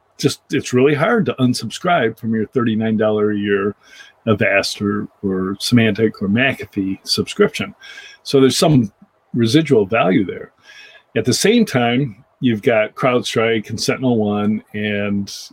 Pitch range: 110-150 Hz